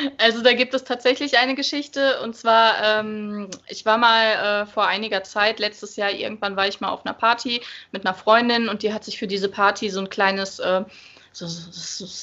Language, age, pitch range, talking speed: German, 20-39, 200-255 Hz, 205 wpm